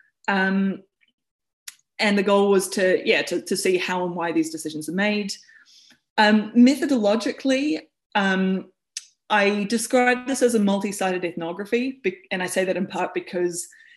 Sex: female